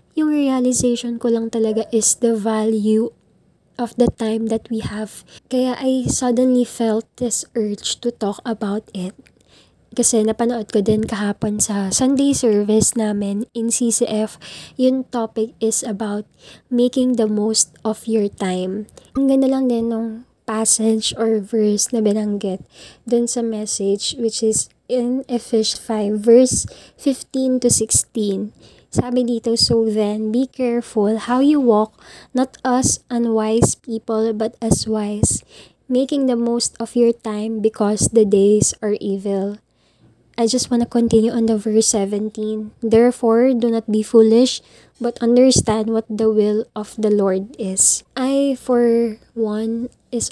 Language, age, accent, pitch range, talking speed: Filipino, 20-39, native, 215-240 Hz, 140 wpm